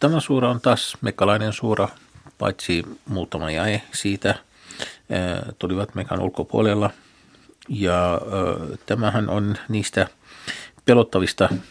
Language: Finnish